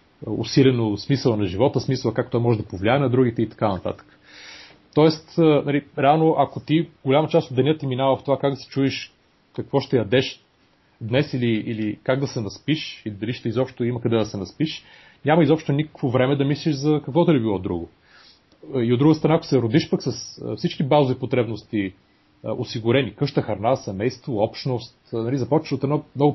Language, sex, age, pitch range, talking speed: Bulgarian, male, 30-49, 115-145 Hz, 190 wpm